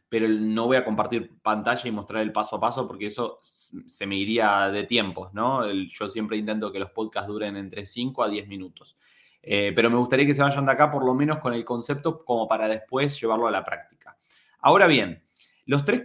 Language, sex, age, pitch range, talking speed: Spanish, male, 20-39, 110-150 Hz, 215 wpm